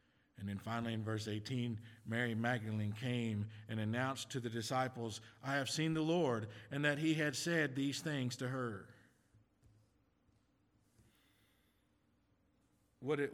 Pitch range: 110-155 Hz